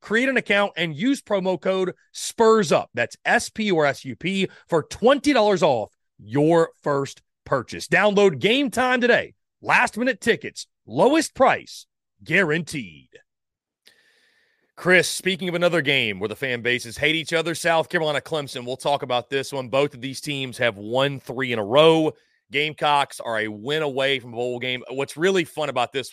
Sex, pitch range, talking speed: male, 125-175 Hz, 170 wpm